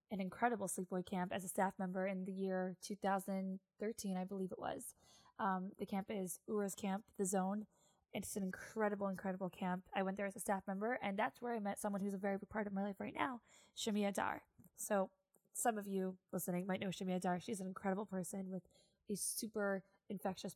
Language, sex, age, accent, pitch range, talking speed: English, female, 20-39, American, 190-215 Hz, 210 wpm